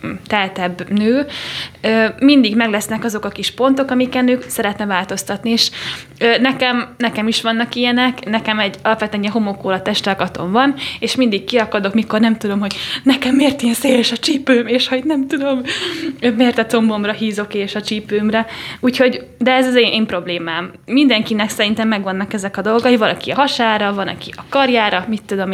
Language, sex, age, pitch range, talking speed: Hungarian, female, 10-29, 205-245 Hz, 165 wpm